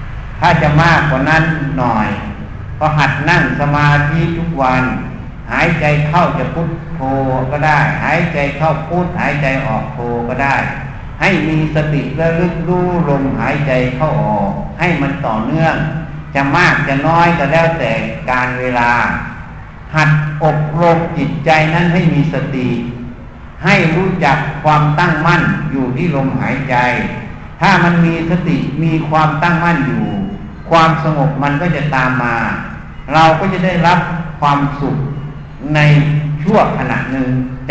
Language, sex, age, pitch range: Thai, male, 60-79, 135-170 Hz